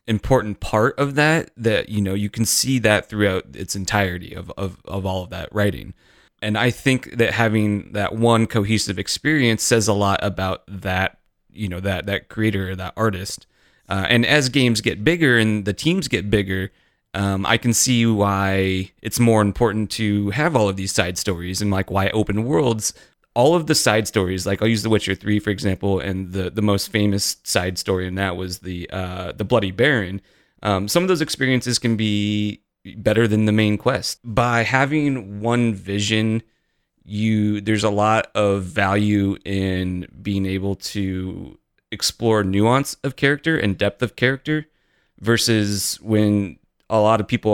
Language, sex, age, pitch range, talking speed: English, male, 30-49, 95-115 Hz, 180 wpm